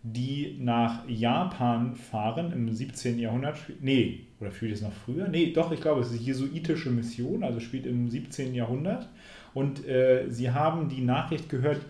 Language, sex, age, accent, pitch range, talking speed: German, male, 30-49, German, 120-140 Hz, 175 wpm